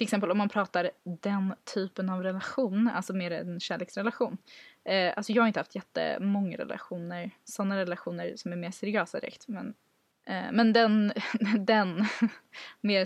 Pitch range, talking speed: 180-220 Hz, 155 wpm